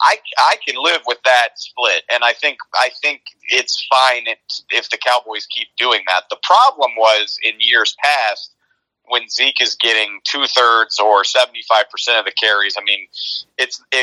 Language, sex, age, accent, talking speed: English, male, 30-49, American, 170 wpm